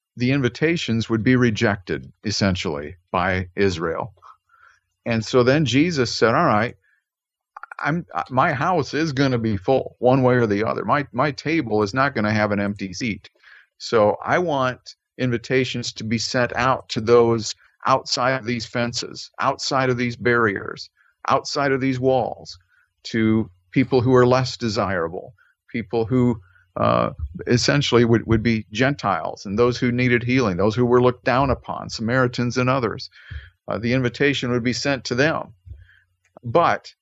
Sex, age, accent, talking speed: male, 50-69, American, 160 wpm